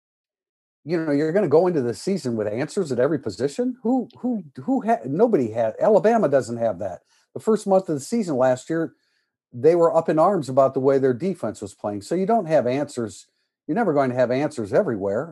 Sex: male